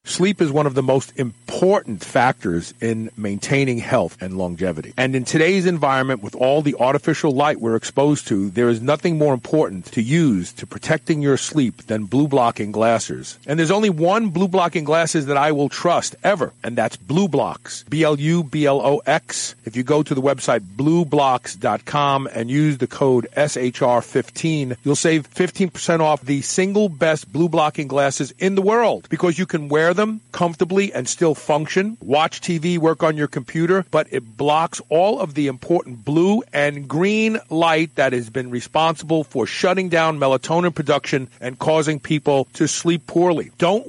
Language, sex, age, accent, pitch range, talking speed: English, male, 40-59, American, 135-170 Hz, 165 wpm